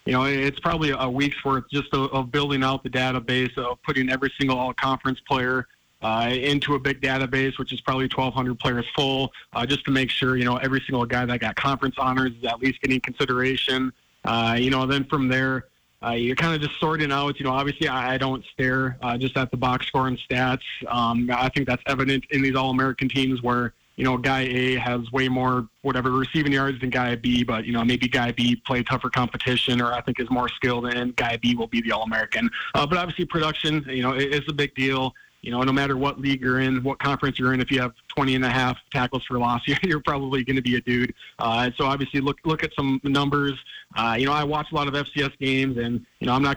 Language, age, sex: English, 20-39, male